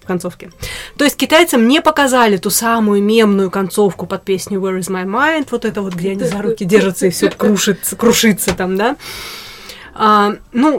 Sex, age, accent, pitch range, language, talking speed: female, 20-39, native, 190-245 Hz, Russian, 180 wpm